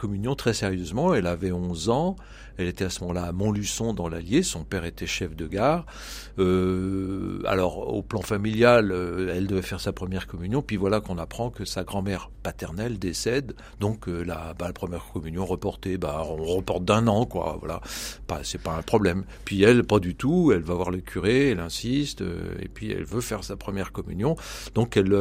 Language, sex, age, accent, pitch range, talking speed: French, male, 50-69, French, 90-110 Hz, 200 wpm